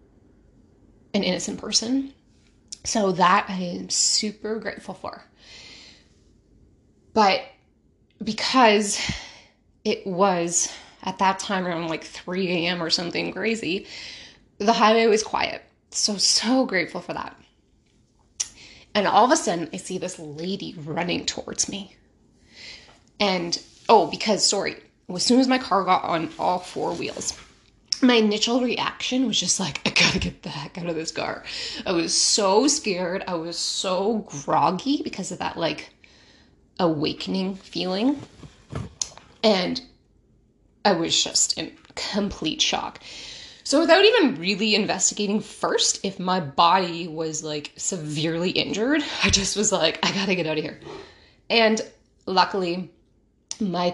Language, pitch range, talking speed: English, 175-220 Hz, 135 wpm